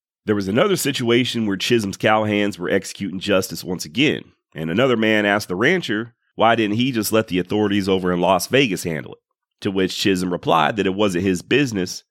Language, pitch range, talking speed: English, 95-125 Hz, 200 wpm